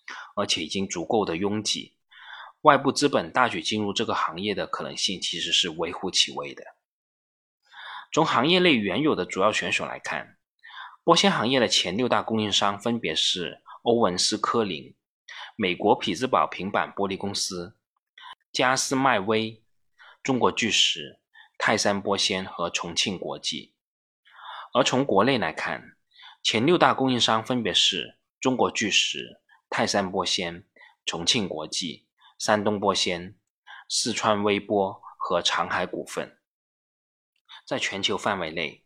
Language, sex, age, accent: Chinese, male, 20-39, native